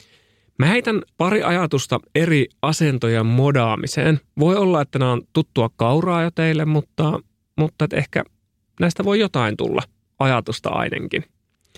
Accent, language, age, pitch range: native, Finnish, 30-49, 125-160 Hz